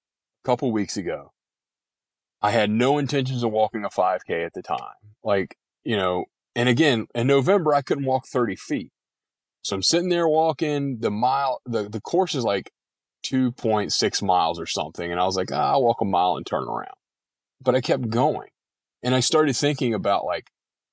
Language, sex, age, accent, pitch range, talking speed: English, male, 30-49, American, 110-150 Hz, 180 wpm